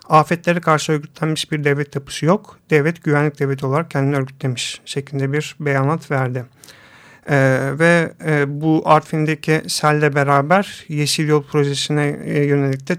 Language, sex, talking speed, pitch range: Turkish, male, 135 wpm, 140-160 Hz